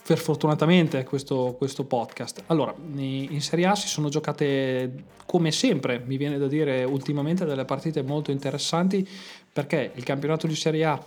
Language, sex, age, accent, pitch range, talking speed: Italian, male, 20-39, native, 130-155 Hz, 155 wpm